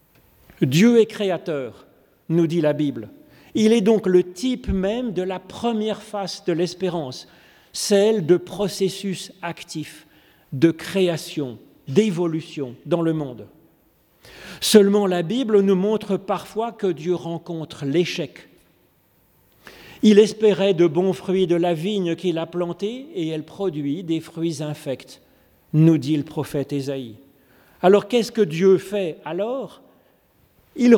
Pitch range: 170-220 Hz